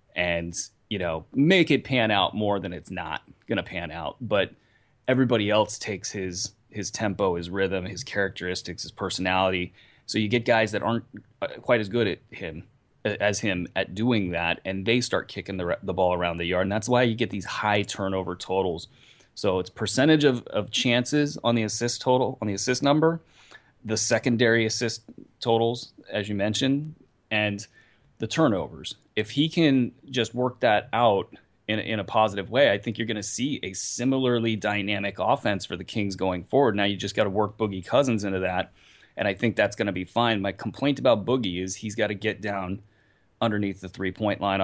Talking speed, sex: 200 wpm, male